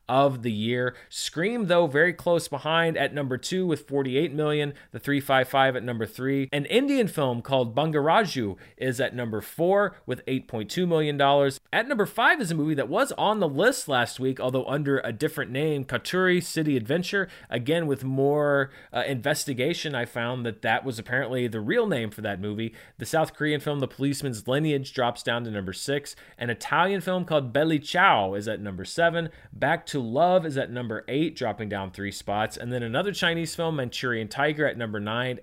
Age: 30-49